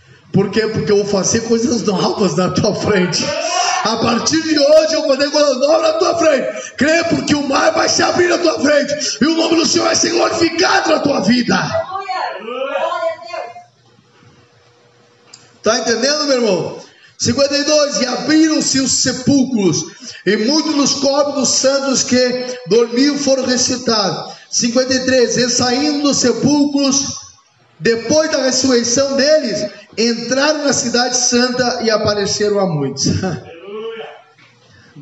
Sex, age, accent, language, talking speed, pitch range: male, 20-39, Brazilian, Portuguese, 135 wpm, 205-285 Hz